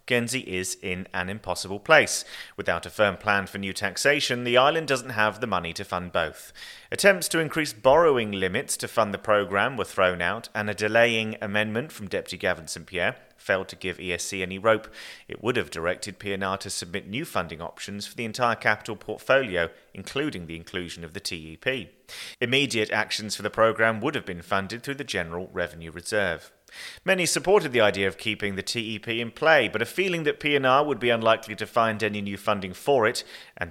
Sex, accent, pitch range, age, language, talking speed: male, British, 95-125 Hz, 30-49, English, 195 wpm